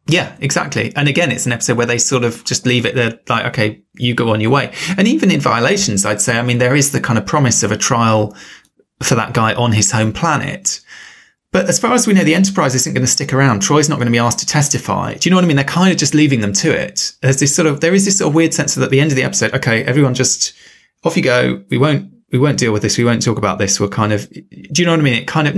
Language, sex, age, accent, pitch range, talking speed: English, male, 20-39, British, 110-145 Hz, 305 wpm